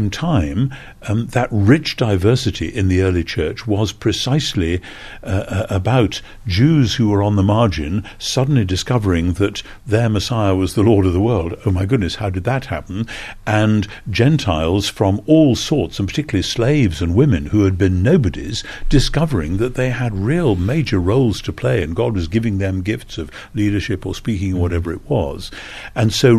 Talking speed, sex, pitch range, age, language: 170 wpm, male, 95-125 Hz, 60-79, English